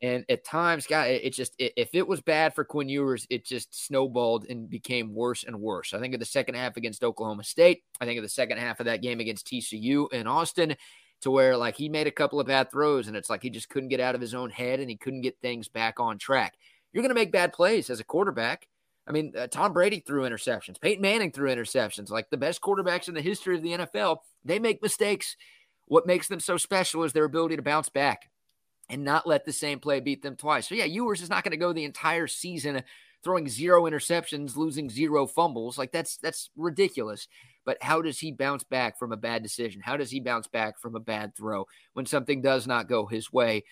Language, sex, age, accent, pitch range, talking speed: English, male, 30-49, American, 120-155 Hz, 235 wpm